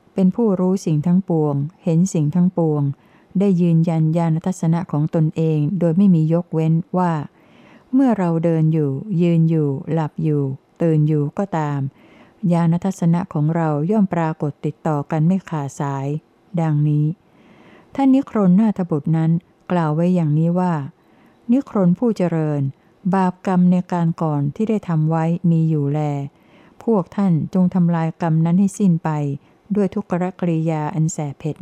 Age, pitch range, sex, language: 60-79, 155-185 Hz, female, Thai